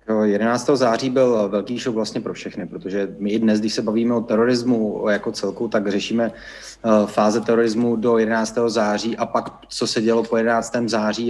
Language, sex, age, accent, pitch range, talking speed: Czech, male, 30-49, native, 115-130 Hz, 175 wpm